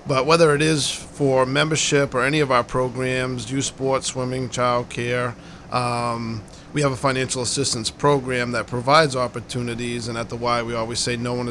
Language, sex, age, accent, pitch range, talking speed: English, male, 40-59, American, 120-135 Hz, 180 wpm